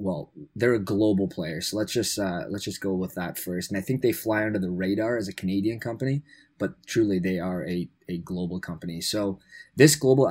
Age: 20-39